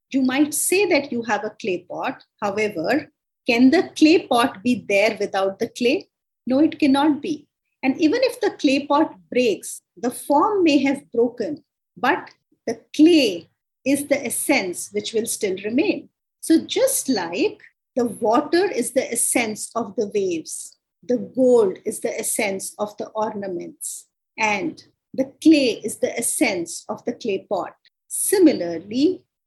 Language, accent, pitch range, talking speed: English, Indian, 210-295 Hz, 155 wpm